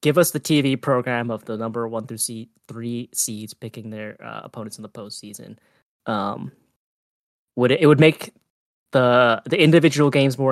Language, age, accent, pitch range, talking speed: English, 10-29, American, 120-150 Hz, 170 wpm